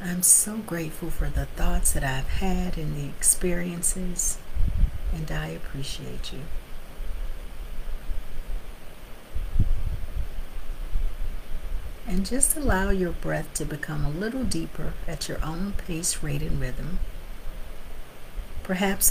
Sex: female